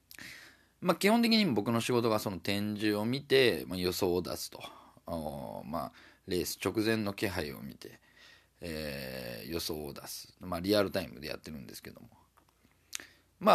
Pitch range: 90-125 Hz